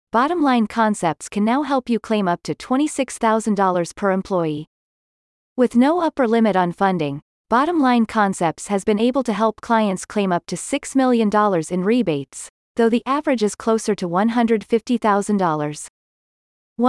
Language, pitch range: English, 180-245 Hz